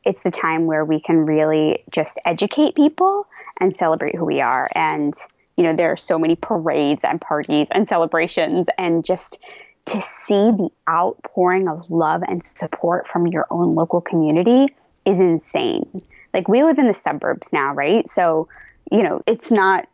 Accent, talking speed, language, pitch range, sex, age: American, 170 wpm, English, 170-235 Hz, female, 20-39